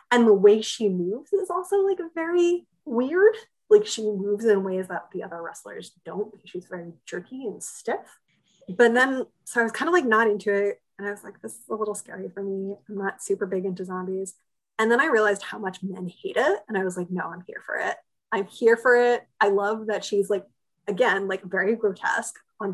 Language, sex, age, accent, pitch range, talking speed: English, female, 20-39, American, 185-220 Hz, 225 wpm